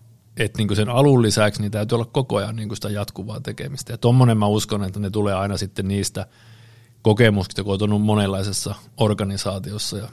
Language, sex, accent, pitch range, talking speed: Finnish, male, native, 105-120 Hz, 180 wpm